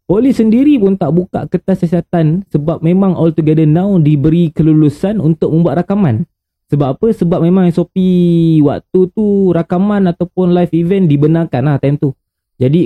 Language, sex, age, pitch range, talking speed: Malay, male, 20-39, 140-180 Hz, 155 wpm